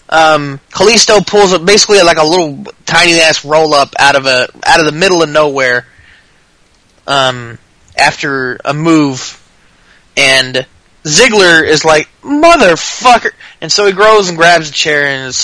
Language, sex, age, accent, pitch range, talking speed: English, male, 20-39, American, 135-190 Hz, 145 wpm